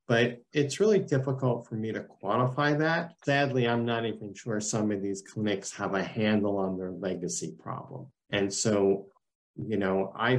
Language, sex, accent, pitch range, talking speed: English, male, American, 100-130 Hz, 175 wpm